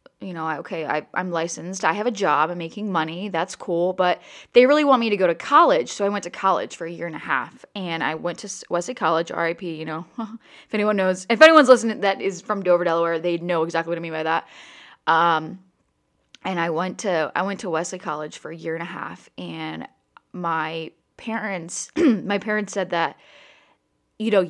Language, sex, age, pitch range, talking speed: English, female, 20-39, 165-210 Hz, 210 wpm